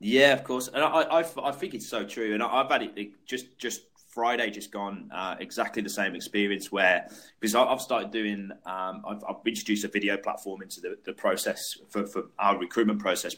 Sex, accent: male, British